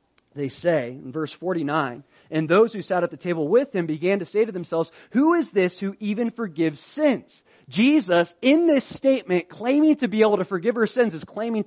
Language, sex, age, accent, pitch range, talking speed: English, male, 30-49, American, 165-230 Hz, 205 wpm